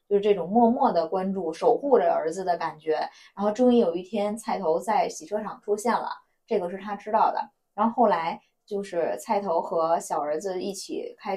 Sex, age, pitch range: female, 20-39, 195-250 Hz